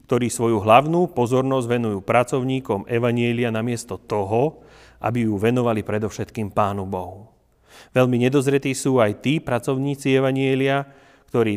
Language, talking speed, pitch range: Slovak, 120 wpm, 110-135 Hz